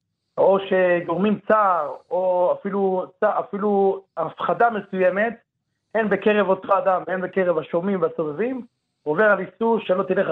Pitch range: 170-205 Hz